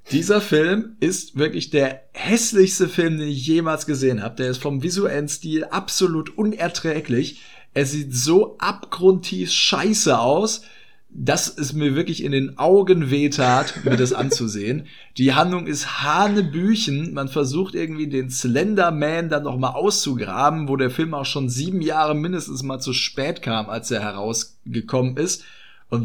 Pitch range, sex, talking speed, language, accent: 120-160 Hz, male, 150 wpm, German, German